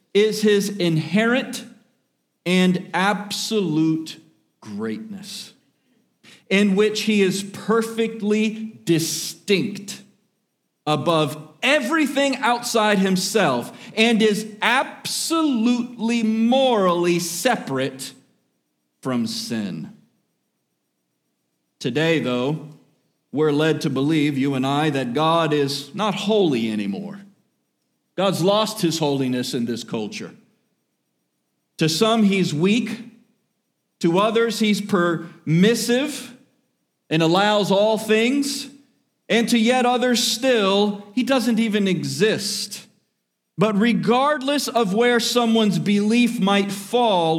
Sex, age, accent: male, 40-59, American